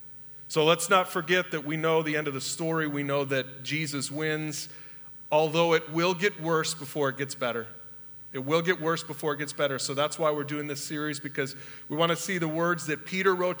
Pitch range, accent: 150-180 Hz, American